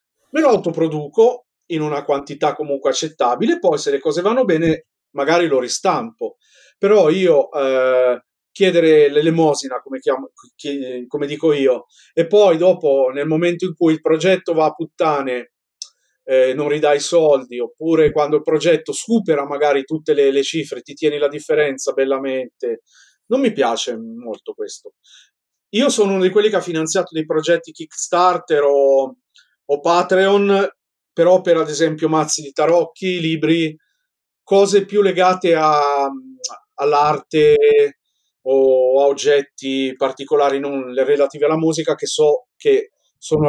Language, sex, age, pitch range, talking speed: Italian, male, 40-59, 140-200 Hz, 140 wpm